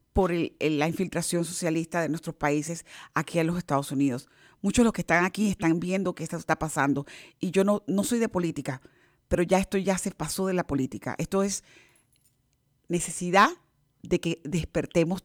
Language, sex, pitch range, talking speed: English, female, 155-185 Hz, 190 wpm